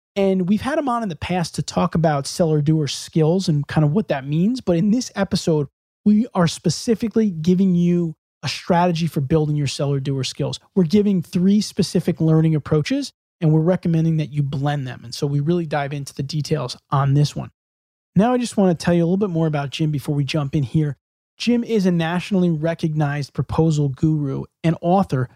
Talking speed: 205 wpm